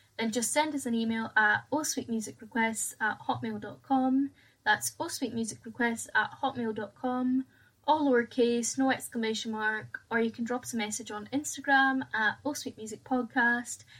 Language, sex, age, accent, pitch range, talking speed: English, female, 10-29, British, 215-255 Hz, 130 wpm